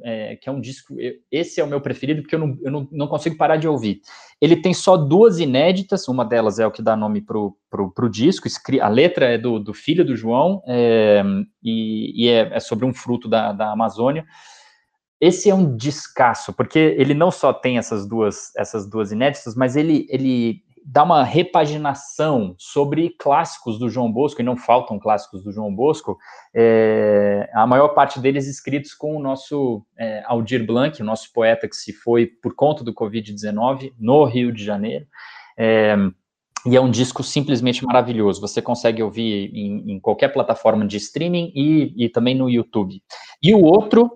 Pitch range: 115-150 Hz